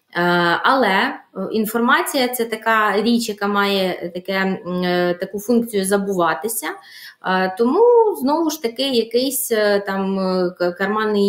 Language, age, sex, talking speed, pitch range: Ukrainian, 20-39, female, 90 wpm, 195-235 Hz